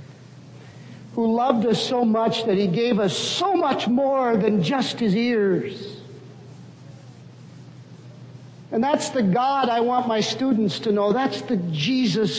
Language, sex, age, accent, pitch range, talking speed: English, male, 60-79, American, 140-220 Hz, 140 wpm